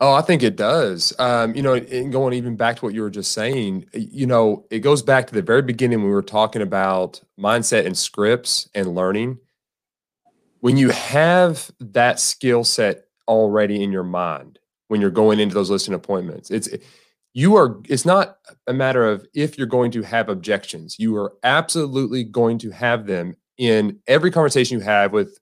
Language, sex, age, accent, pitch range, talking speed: English, male, 30-49, American, 110-150 Hz, 190 wpm